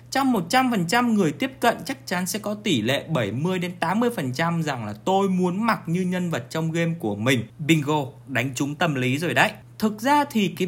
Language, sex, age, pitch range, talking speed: Vietnamese, male, 20-39, 135-200 Hz, 200 wpm